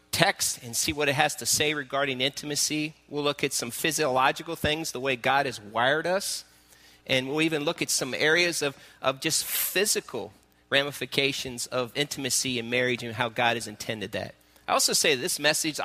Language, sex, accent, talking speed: English, male, American, 190 wpm